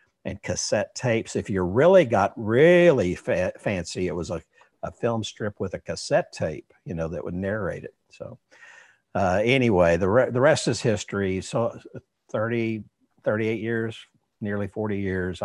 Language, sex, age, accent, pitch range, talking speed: English, male, 60-79, American, 90-110 Hz, 165 wpm